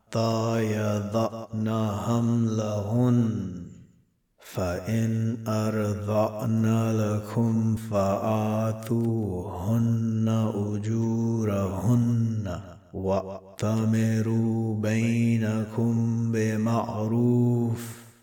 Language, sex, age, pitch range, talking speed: Arabic, male, 60-79, 105-115 Hz, 35 wpm